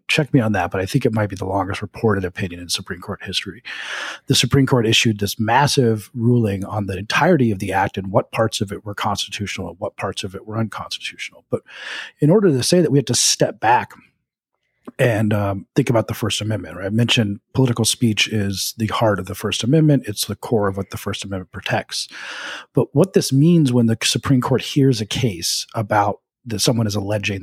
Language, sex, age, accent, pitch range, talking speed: English, male, 40-59, American, 100-130 Hz, 215 wpm